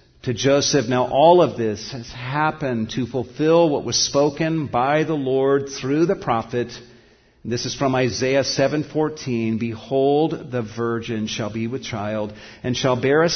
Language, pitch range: English, 125-155 Hz